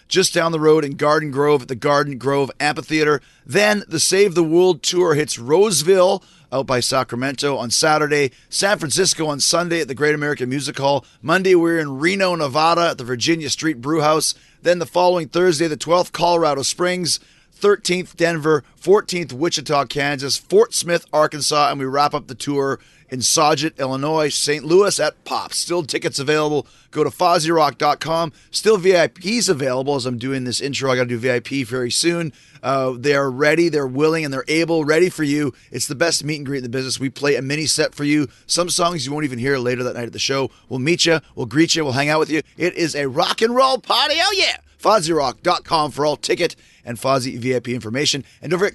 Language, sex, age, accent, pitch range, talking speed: English, male, 30-49, American, 135-170 Hz, 205 wpm